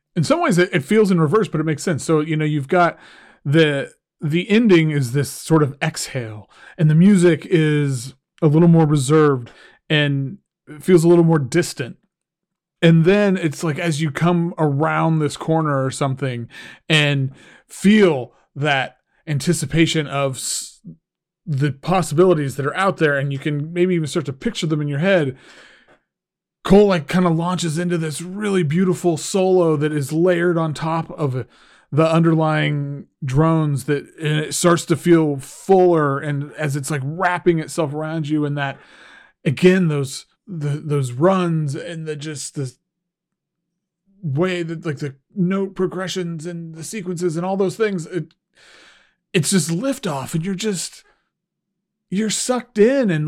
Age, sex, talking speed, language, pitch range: 30-49, male, 160 wpm, English, 150-180 Hz